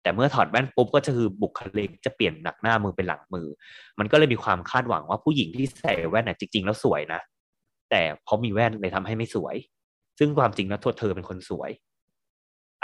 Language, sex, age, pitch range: Thai, male, 20-39, 95-120 Hz